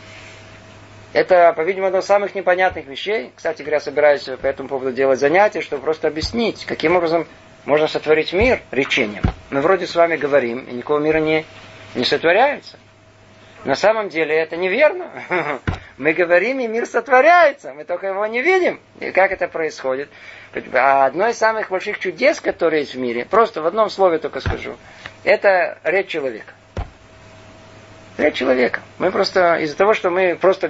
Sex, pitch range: male, 120-190 Hz